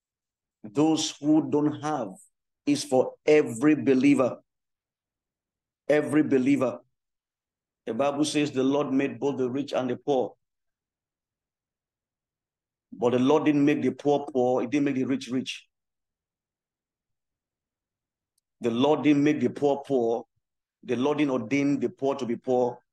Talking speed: 135 wpm